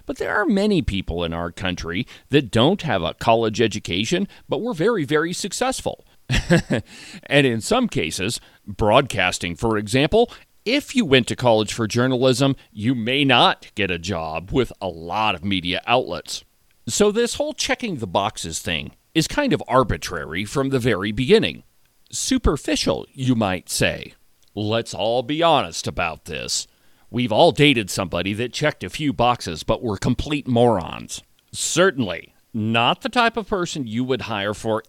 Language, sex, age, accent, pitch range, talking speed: English, male, 40-59, American, 105-150 Hz, 160 wpm